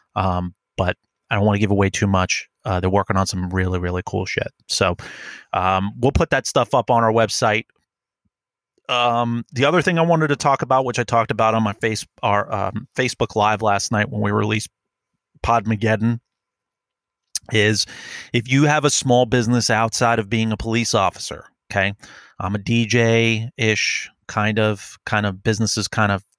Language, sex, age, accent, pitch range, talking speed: English, male, 30-49, American, 100-120 Hz, 180 wpm